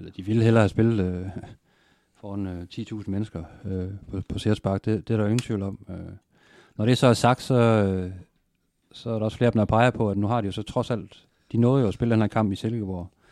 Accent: native